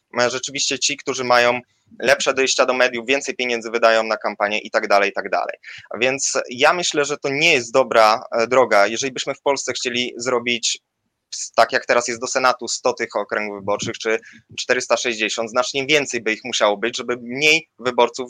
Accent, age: native, 20-39